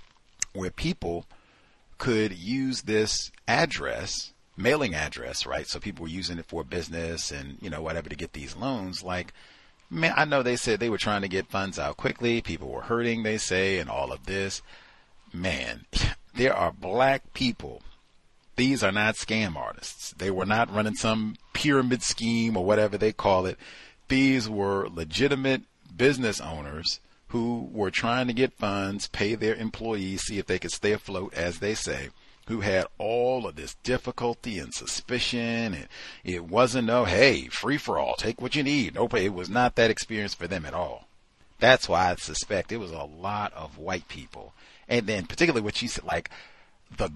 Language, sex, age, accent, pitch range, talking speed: English, male, 40-59, American, 90-120 Hz, 180 wpm